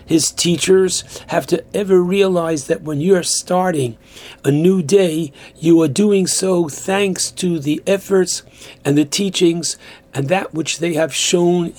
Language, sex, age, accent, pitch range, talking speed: English, male, 60-79, American, 140-180 Hz, 160 wpm